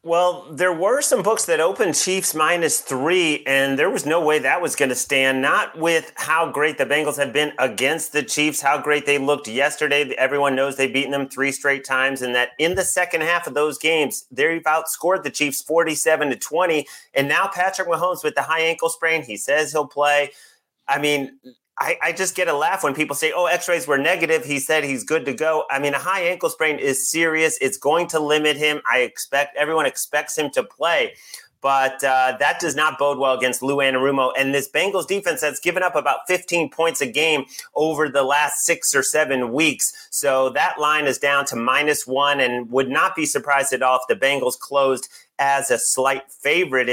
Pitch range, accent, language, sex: 135-165 Hz, American, English, male